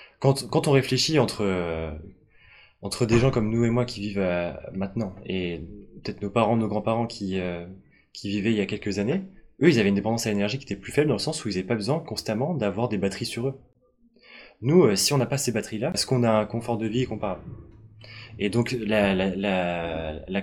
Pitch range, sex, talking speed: 100-125 Hz, male, 230 wpm